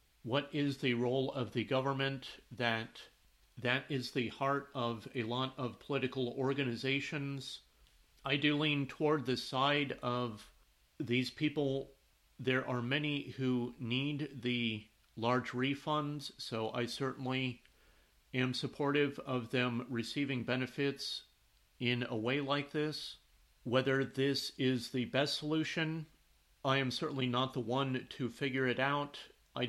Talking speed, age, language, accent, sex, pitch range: 135 wpm, 40-59, English, American, male, 125-140 Hz